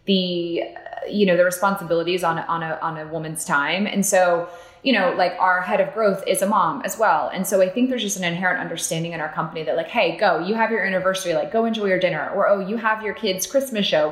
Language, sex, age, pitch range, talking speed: English, female, 20-39, 165-200 Hz, 255 wpm